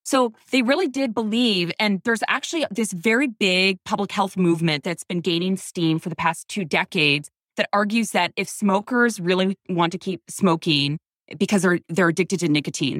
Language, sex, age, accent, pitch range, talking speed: English, female, 20-39, American, 175-230 Hz, 180 wpm